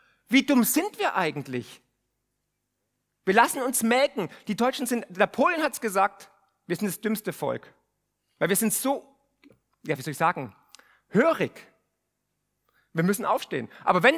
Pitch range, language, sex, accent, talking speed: 195-255 Hz, German, male, German, 155 wpm